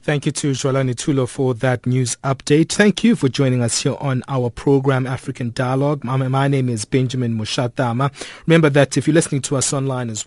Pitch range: 125-150 Hz